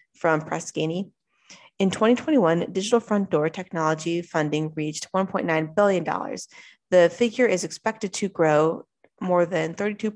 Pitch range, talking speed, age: 170-220 Hz, 125 wpm, 20-39